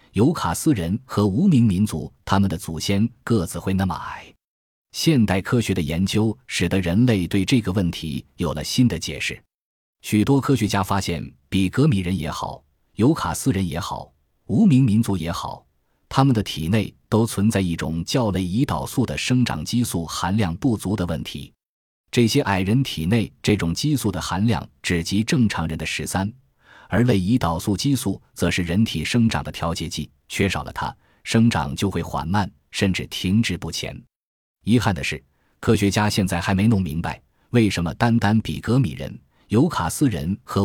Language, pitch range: Chinese, 85-110 Hz